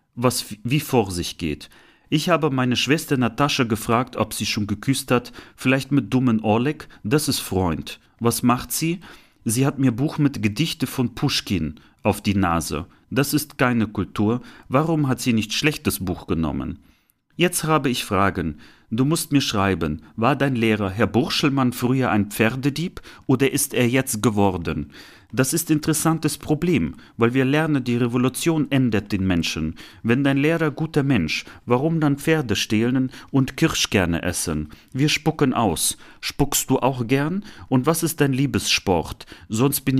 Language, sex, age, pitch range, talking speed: German, male, 40-59, 110-145 Hz, 165 wpm